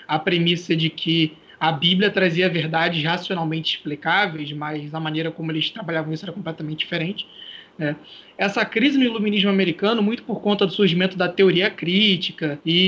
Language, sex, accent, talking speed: Portuguese, male, Brazilian, 165 wpm